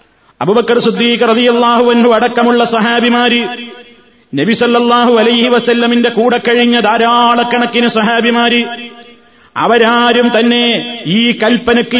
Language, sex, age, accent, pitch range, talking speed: Malayalam, male, 30-49, native, 235-245 Hz, 80 wpm